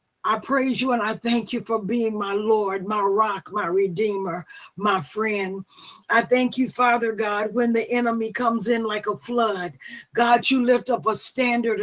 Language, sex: English, female